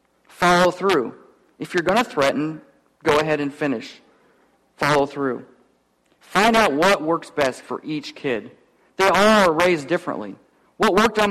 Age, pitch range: 40-59, 140-190 Hz